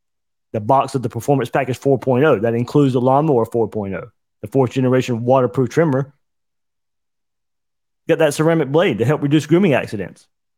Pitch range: 130-170 Hz